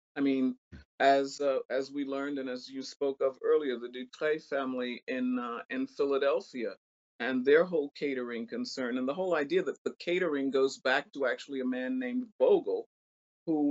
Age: 50-69